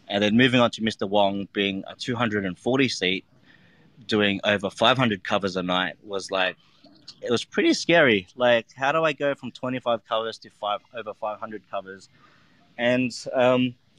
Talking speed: 160 wpm